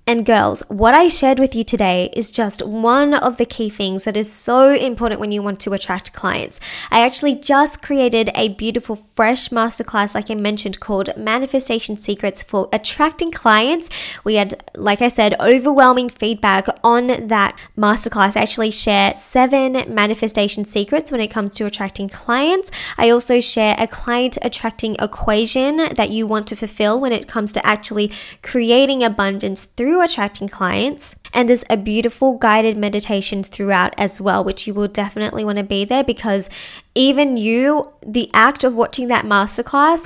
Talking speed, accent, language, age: 170 wpm, Australian, English, 10-29